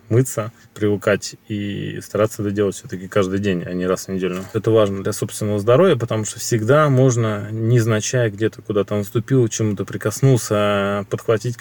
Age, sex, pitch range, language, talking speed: 20-39, male, 100-125 Hz, Russian, 155 wpm